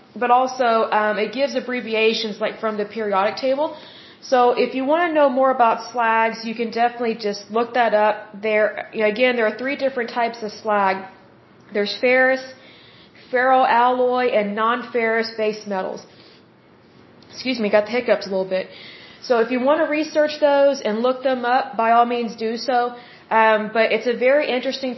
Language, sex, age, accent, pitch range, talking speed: Hindi, female, 30-49, American, 215-250 Hz, 180 wpm